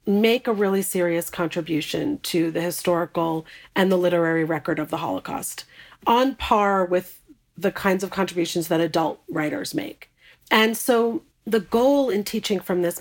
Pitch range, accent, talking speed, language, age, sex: 175-220 Hz, American, 155 wpm, English, 40-59, female